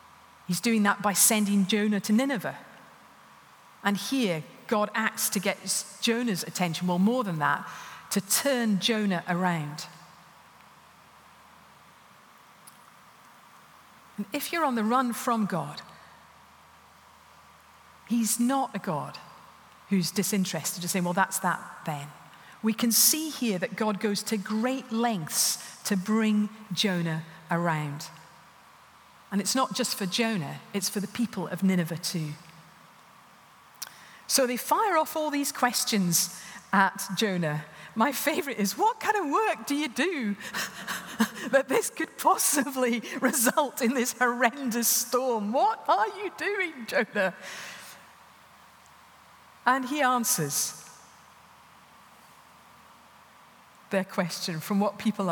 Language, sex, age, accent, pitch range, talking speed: English, female, 40-59, British, 190-250 Hz, 120 wpm